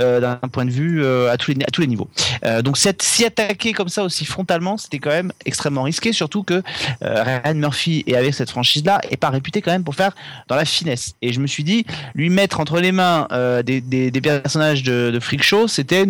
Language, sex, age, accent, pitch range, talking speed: French, male, 30-49, French, 130-170 Hz, 240 wpm